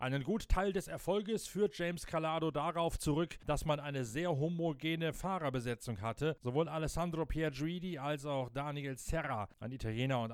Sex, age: male, 40-59